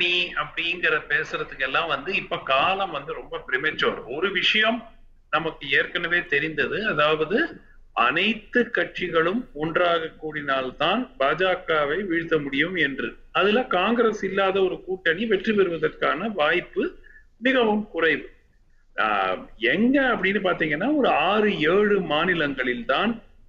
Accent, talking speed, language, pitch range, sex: native, 65 wpm, Tamil, 165-235 Hz, male